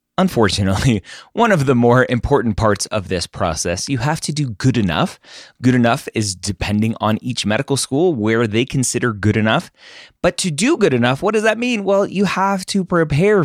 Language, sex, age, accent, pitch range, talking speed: English, male, 20-39, American, 95-155 Hz, 190 wpm